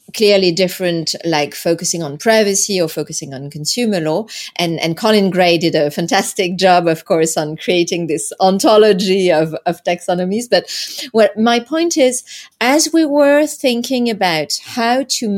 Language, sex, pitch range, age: French, female, 180-240 Hz, 30-49